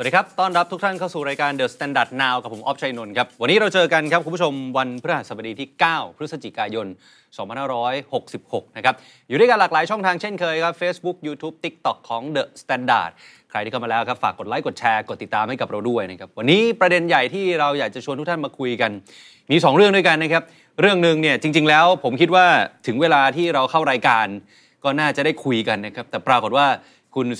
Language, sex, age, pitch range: Thai, male, 20-39, 130-170 Hz